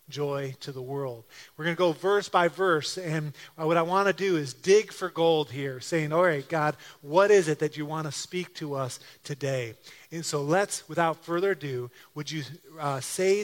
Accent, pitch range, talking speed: American, 145-190 Hz, 210 wpm